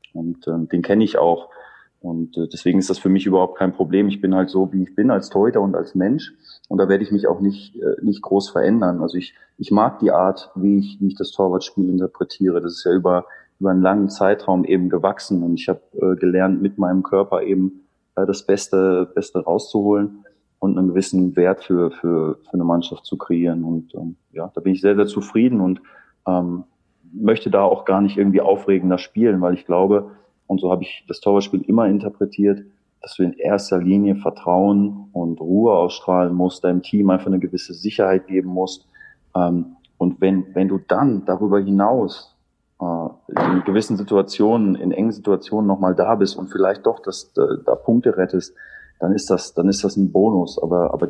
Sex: male